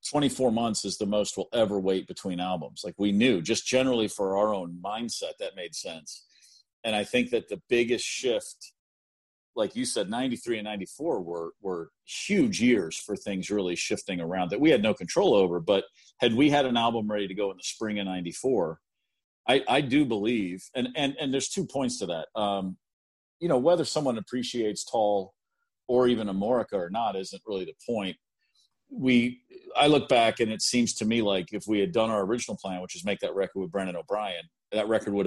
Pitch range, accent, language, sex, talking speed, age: 95-135 Hz, American, English, male, 205 wpm, 40-59